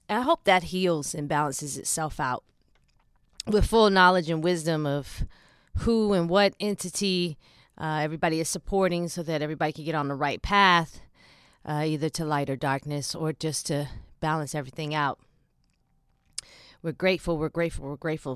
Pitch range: 150-190 Hz